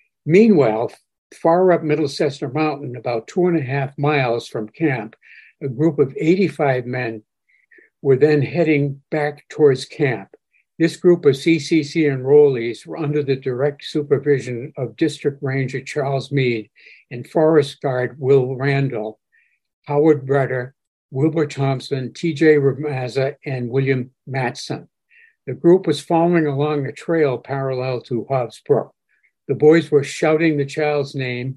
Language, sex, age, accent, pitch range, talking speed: English, male, 60-79, American, 135-160 Hz, 135 wpm